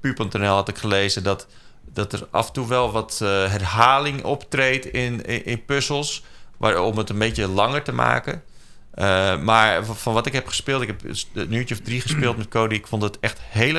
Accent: Dutch